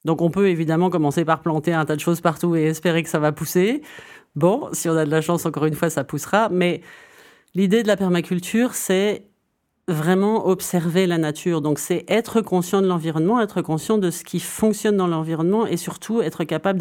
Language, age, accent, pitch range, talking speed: French, 40-59, French, 155-190 Hz, 205 wpm